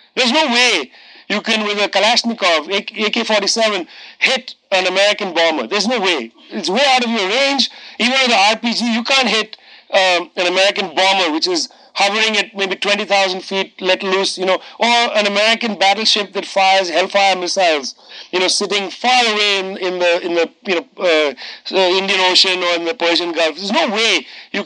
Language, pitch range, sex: English, 185-230 Hz, male